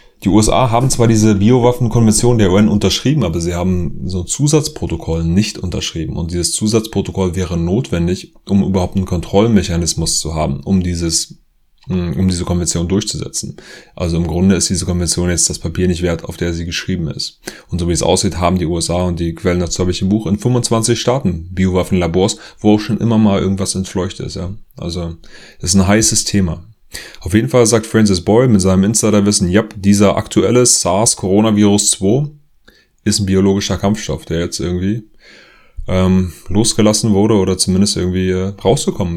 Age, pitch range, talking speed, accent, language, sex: 30-49, 85-105 Hz, 170 wpm, German, German, male